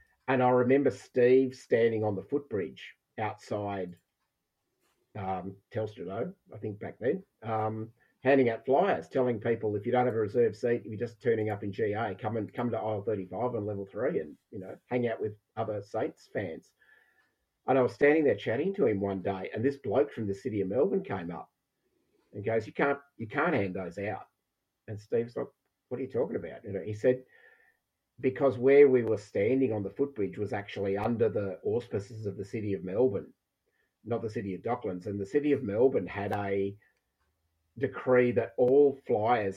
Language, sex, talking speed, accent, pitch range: English, male, 195 wpm, Australian, 100-120 Hz